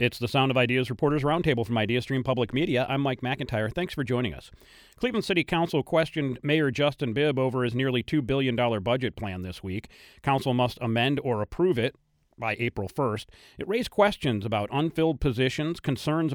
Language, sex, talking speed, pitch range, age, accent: English, male, 185 wpm, 120-155 Hz, 40-59, American